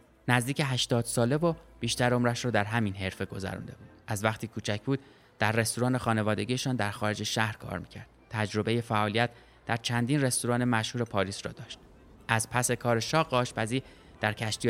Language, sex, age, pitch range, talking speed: Persian, male, 20-39, 105-130 Hz, 165 wpm